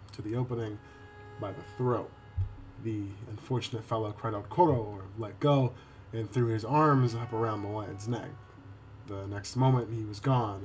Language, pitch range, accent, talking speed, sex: English, 100-120 Hz, American, 170 wpm, male